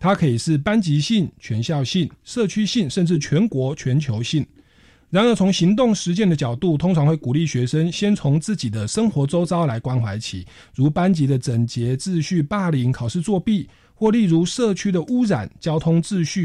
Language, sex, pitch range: Chinese, male, 125-190 Hz